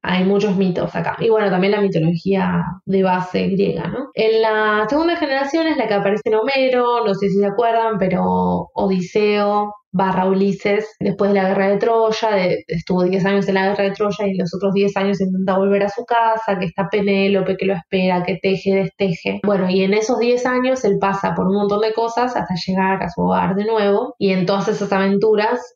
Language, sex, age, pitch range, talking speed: Spanish, female, 20-39, 195-220 Hz, 210 wpm